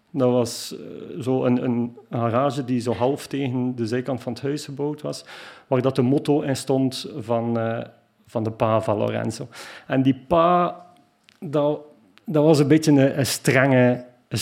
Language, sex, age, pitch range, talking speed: Dutch, male, 40-59, 115-135 Hz, 175 wpm